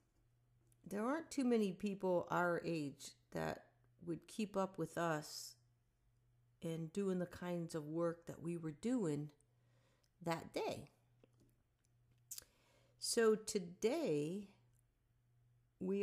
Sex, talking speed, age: female, 105 wpm, 50-69